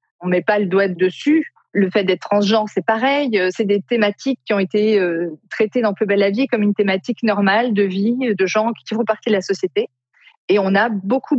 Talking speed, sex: 230 wpm, female